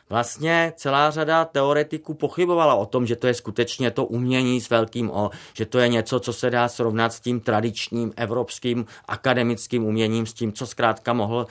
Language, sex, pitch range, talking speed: Czech, male, 115-135 Hz, 180 wpm